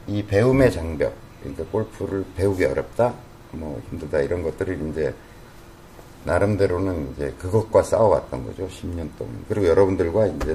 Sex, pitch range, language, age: male, 90-115 Hz, Korean, 50-69